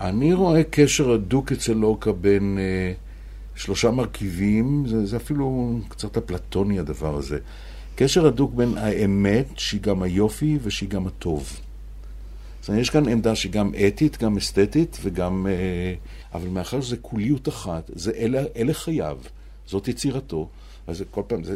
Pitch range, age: 90-120 Hz, 60-79